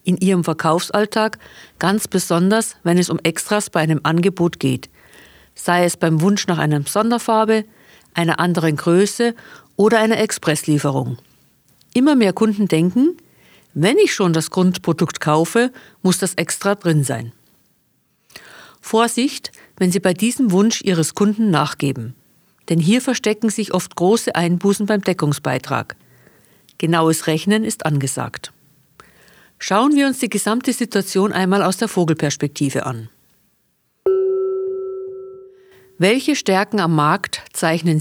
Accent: German